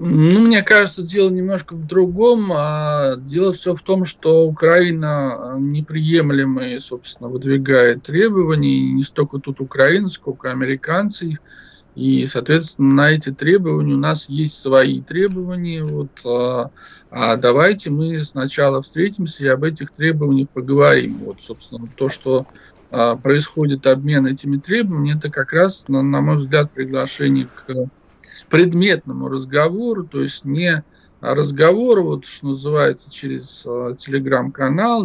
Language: Russian